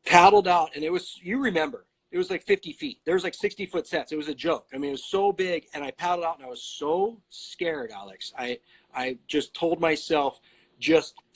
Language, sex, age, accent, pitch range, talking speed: English, male, 30-49, American, 150-205 Hz, 225 wpm